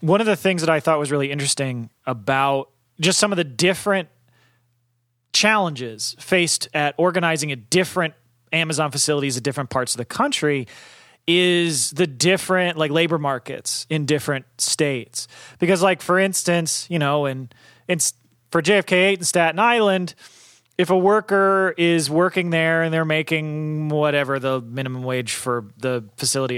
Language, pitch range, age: English, 130-175 Hz, 30-49